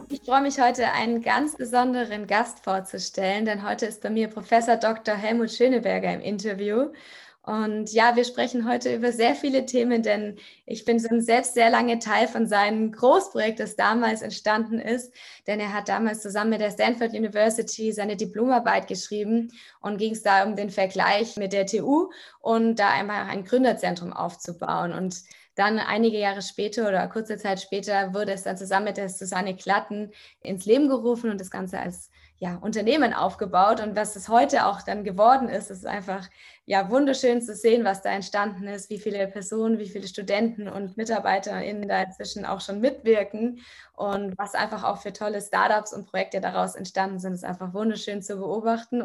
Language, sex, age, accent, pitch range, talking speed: German, female, 20-39, German, 200-235 Hz, 180 wpm